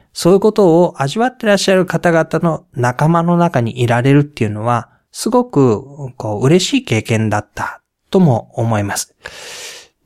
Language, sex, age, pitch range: Japanese, male, 20-39, 120-175 Hz